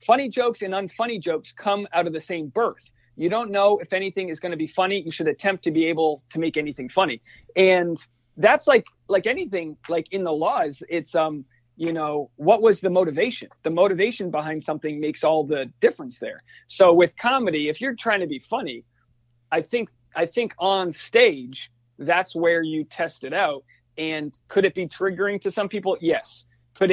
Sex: male